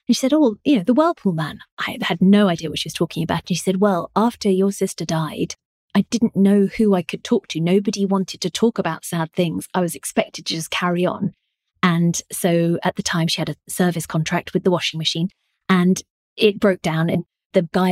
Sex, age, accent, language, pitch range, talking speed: female, 30-49, British, English, 170-205 Hz, 235 wpm